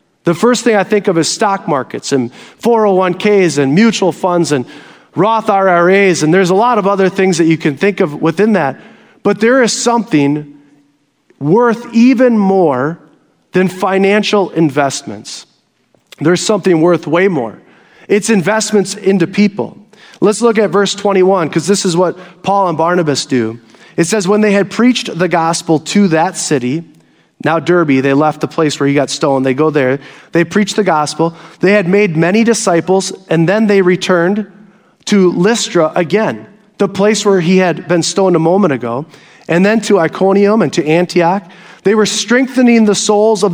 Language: English